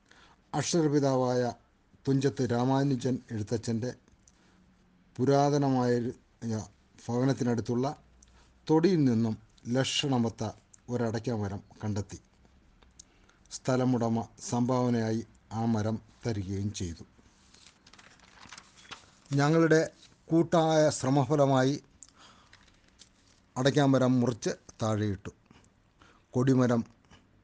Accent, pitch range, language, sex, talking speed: native, 110-135 Hz, Malayalam, male, 50 wpm